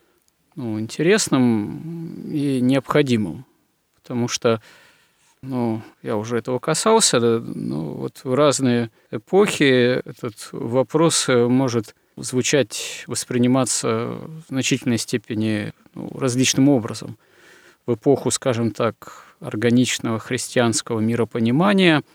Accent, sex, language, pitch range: native, male, Russian, 115-140 Hz